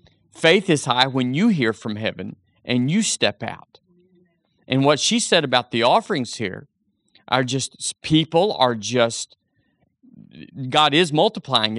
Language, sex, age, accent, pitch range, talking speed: English, male, 50-69, American, 125-170 Hz, 145 wpm